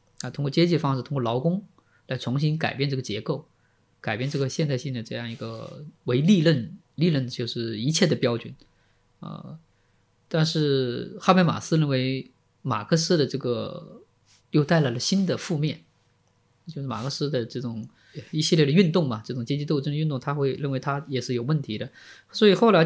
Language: Chinese